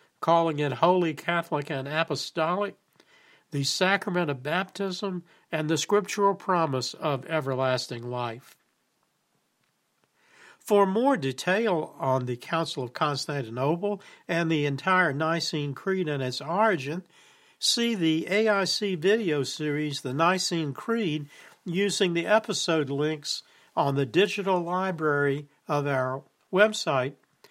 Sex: male